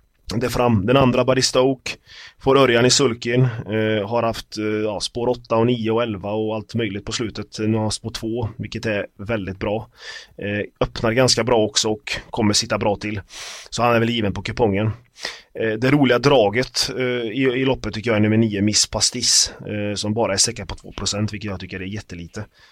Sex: male